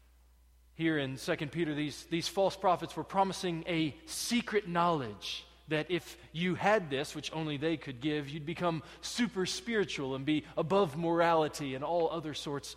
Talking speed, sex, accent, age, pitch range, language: 165 wpm, male, American, 20-39, 145-185 Hz, English